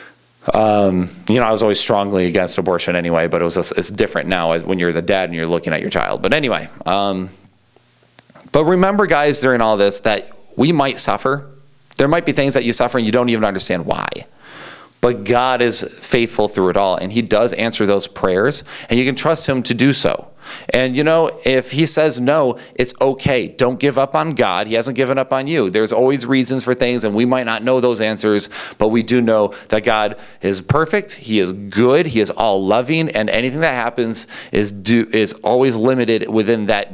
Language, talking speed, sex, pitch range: English, 215 wpm, male, 110-145 Hz